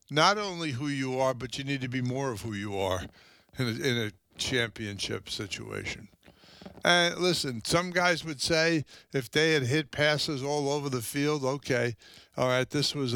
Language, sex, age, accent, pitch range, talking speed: English, male, 60-79, American, 110-135 Hz, 185 wpm